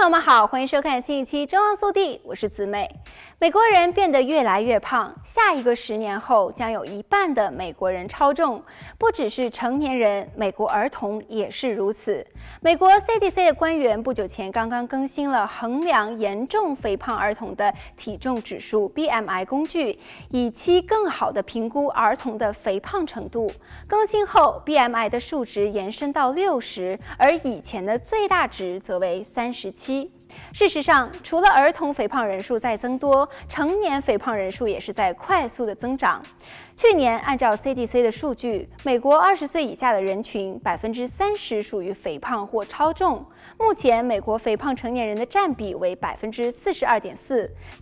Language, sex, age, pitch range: Chinese, female, 20-39, 210-315 Hz